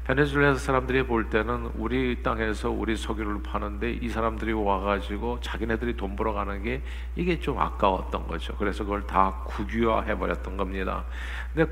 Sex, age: male, 50-69